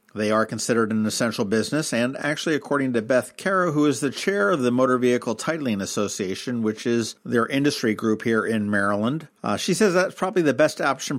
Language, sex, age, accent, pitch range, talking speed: English, male, 50-69, American, 110-130 Hz, 205 wpm